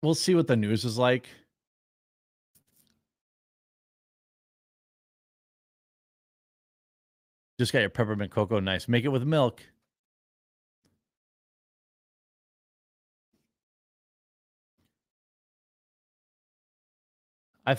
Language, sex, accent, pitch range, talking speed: English, male, American, 105-130 Hz, 60 wpm